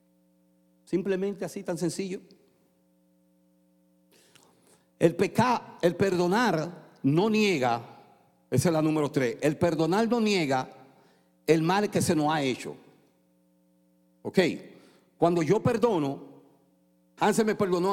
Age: 50-69